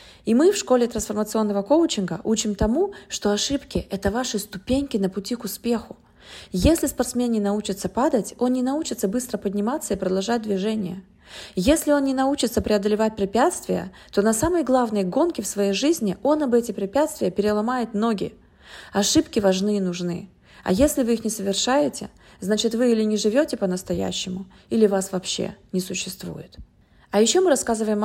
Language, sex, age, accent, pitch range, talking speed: Russian, female, 30-49, native, 195-250 Hz, 160 wpm